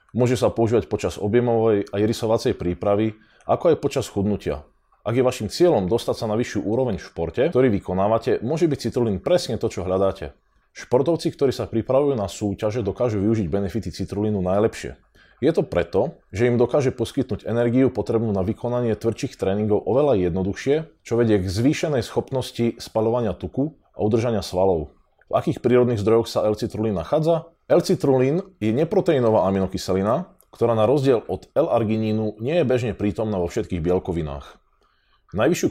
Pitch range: 100-125 Hz